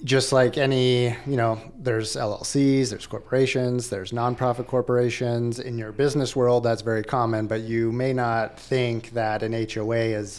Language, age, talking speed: English, 30-49, 160 wpm